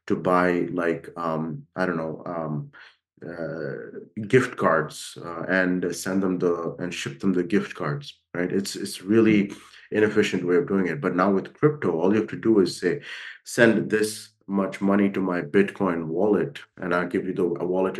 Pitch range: 85-100 Hz